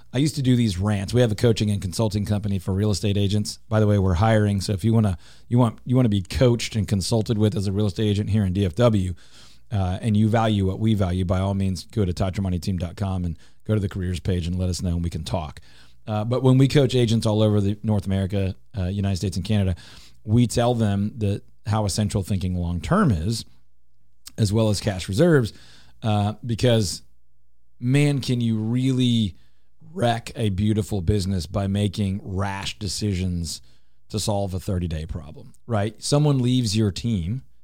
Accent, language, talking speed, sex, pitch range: American, English, 200 wpm, male, 95-115 Hz